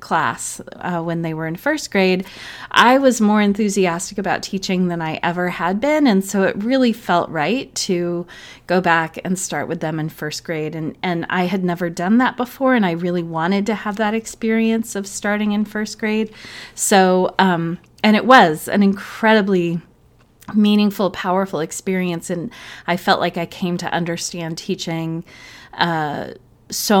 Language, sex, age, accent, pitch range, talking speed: English, female, 30-49, American, 165-210 Hz, 170 wpm